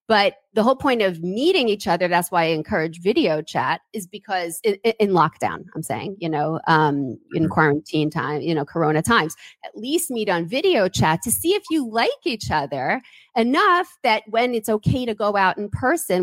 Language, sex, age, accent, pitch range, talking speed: English, female, 30-49, American, 170-220 Hz, 200 wpm